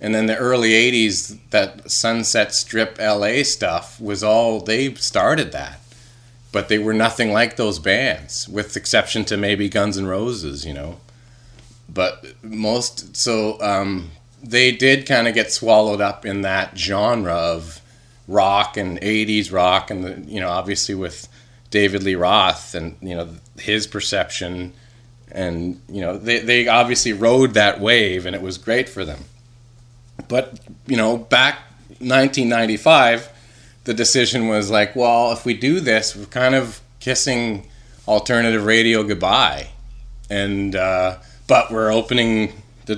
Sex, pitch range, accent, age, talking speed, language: male, 100-120 Hz, American, 30-49, 150 wpm, English